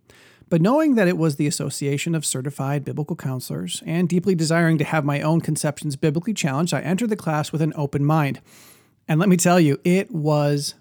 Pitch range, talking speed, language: 145-175 Hz, 200 wpm, English